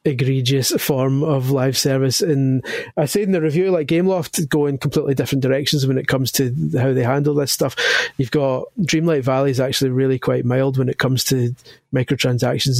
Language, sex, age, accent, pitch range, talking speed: English, male, 30-49, British, 130-150 Hz, 190 wpm